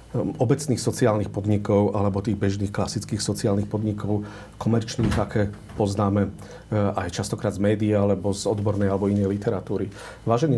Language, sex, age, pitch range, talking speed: Slovak, male, 40-59, 105-120 Hz, 130 wpm